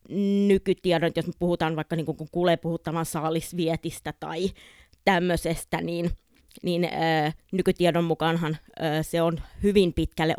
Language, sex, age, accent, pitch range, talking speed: Finnish, female, 20-39, native, 155-175 Hz, 120 wpm